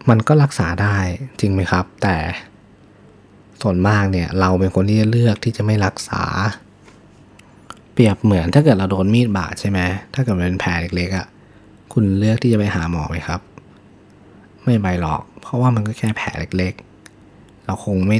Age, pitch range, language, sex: 20-39, 95-110 Hz, Thai, male